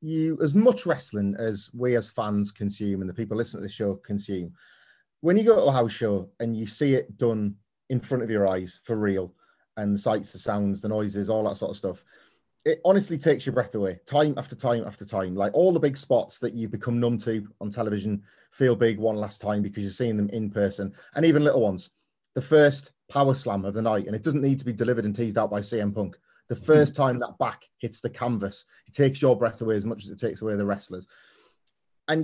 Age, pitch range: 30-49, 105-135 Hz